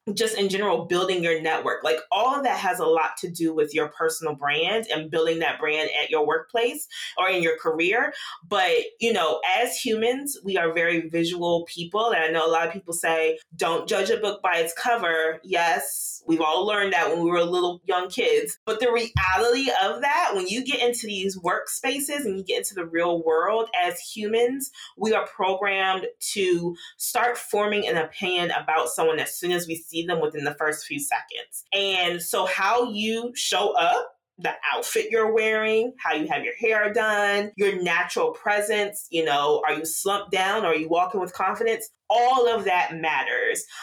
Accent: American